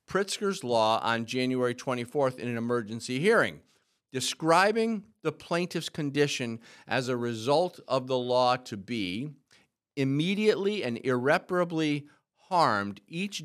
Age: 50-69